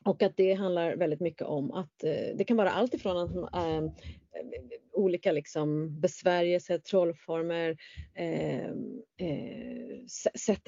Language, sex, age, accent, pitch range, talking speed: Swedish, female, 30-49, native, 170-220 Hz, 95 wpm